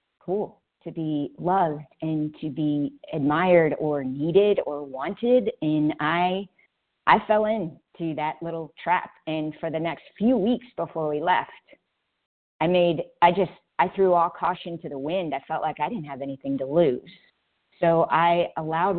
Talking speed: 165 wpm